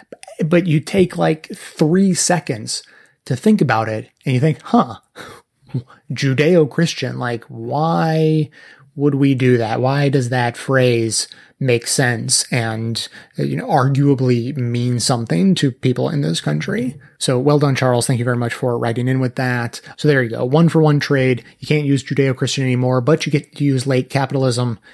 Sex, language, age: male, English, 30-49